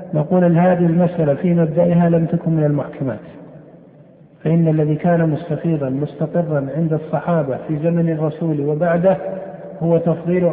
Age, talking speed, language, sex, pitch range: 50-69, 125 wpm, Arabic, male, 155-180 Hz